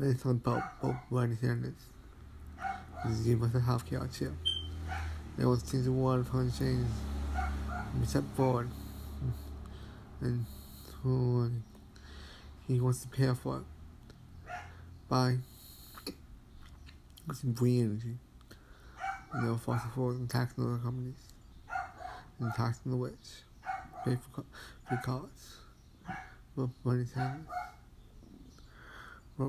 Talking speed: 115 wpm